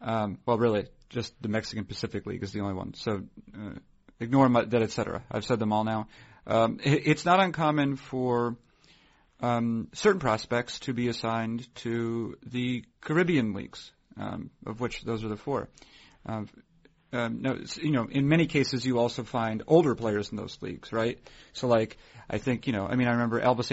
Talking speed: 190 wpm